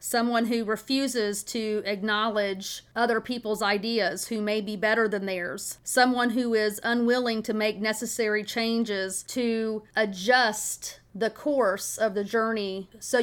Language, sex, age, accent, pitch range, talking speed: English, female, 30-49, American, 215-260 Hz, 135 wpm